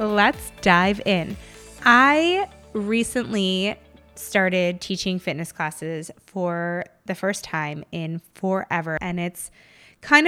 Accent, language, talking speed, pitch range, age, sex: American, English, 105 wpm, 170-205 Hz, 20-39, female